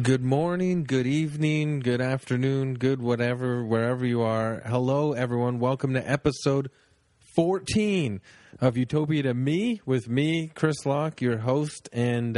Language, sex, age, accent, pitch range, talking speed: English, male, 30-49, American, 115-145 Hz, 135 wpm